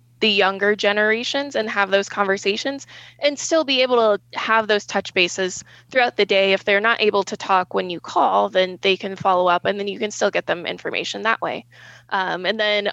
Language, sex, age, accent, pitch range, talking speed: English, female, 20-39, American, 185-215 Hz, 215 wpm